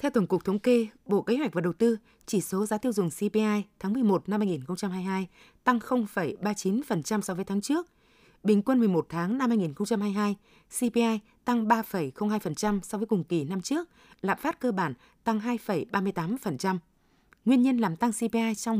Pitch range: 185-230 Hz